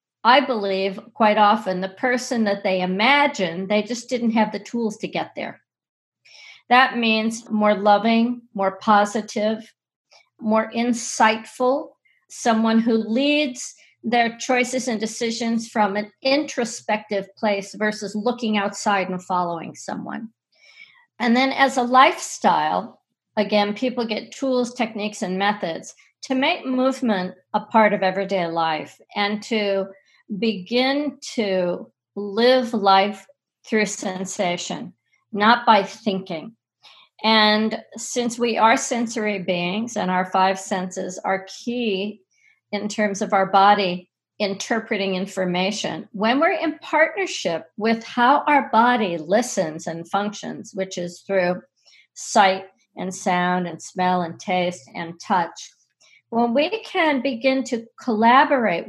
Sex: female